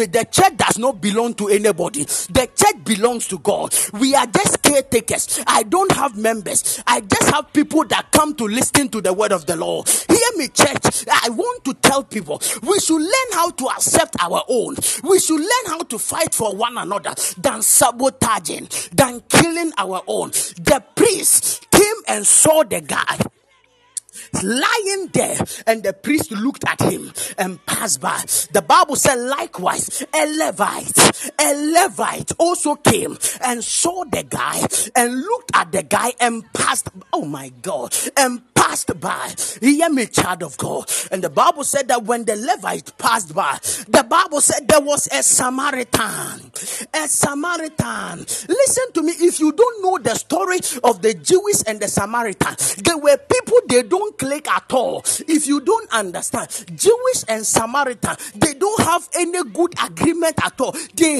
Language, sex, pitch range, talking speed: English, male, 230-340 Hz, 170 wpm